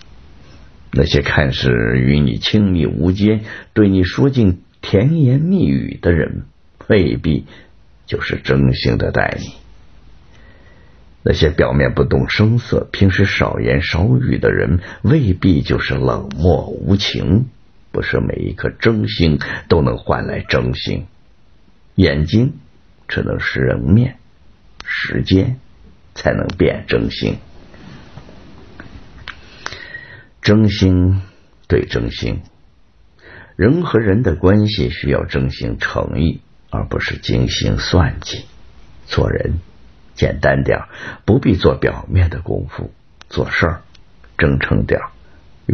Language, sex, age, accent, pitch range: Chinese, male, 50-69, native, 70-105 Hz